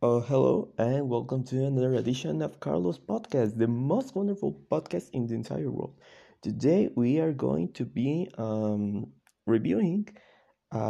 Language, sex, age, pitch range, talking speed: English, male, 20-39, 110-135 Hz, 150 wpm